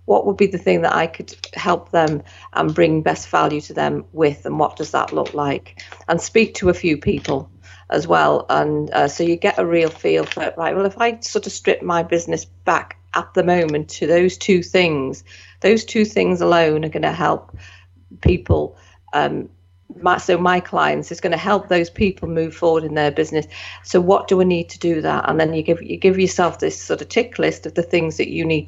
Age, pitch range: 40-59, 140-185 Hz